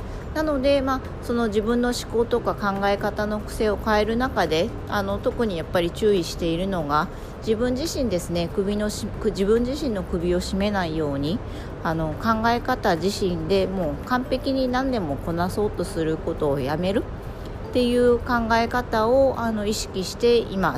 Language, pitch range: Japanese, 175-235 Hz